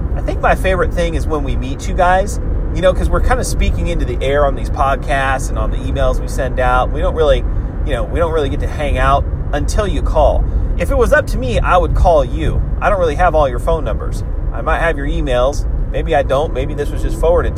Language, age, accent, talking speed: English, 30-49, American, 265 wpm